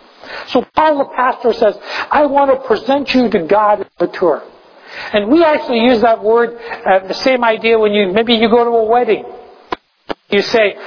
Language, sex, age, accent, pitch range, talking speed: English, male, 60-79, American, 220-275 Hz, 195 wpm